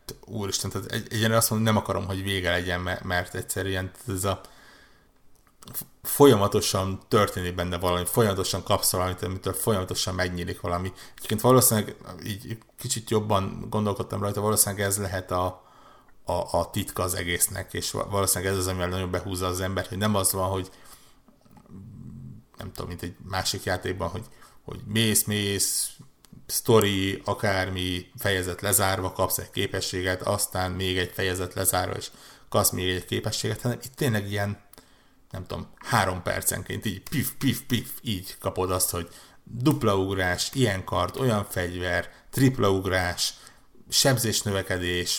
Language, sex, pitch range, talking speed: Hungarian, male, 90-110 Hz, 145 wpm